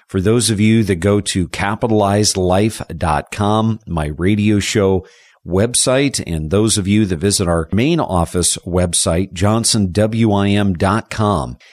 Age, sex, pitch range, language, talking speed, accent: 50-69, male, 95-115 Hz, English, 120 wpm, American